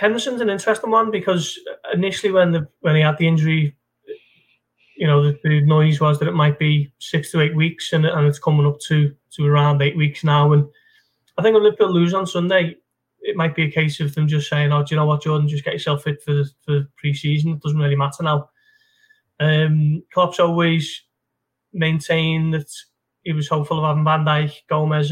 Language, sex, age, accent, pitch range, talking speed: English, male, 20-39, British, 145-165 Hz, 210 wpm